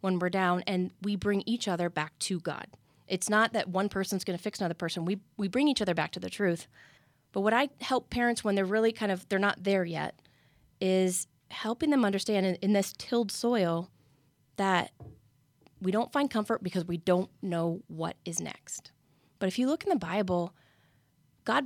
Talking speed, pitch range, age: 200 wpm, 170-215 Hz, 30-49